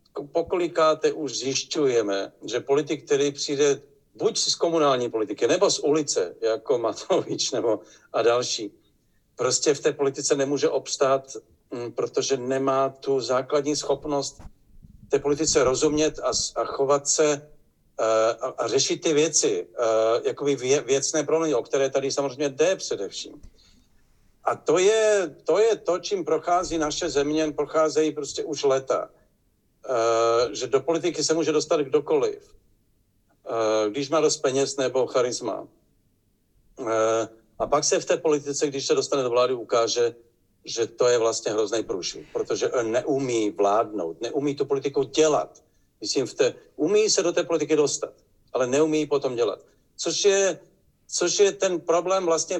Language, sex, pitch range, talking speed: Czech, male, 135-185 Hz, 140 wpm